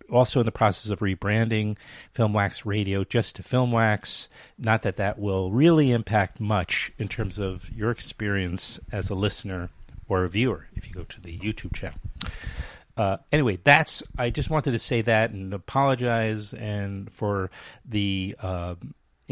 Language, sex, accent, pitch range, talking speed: English, male, American, 100-125 Hz, 160 wpm